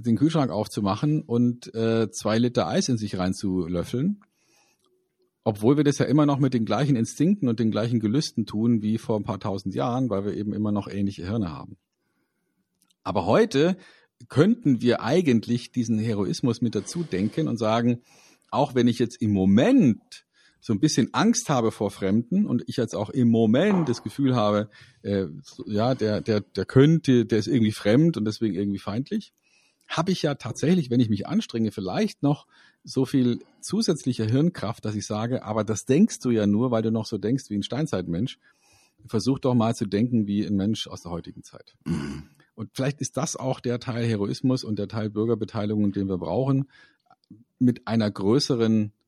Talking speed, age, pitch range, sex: 185 wpm, 40-59, 105-135 Hz, male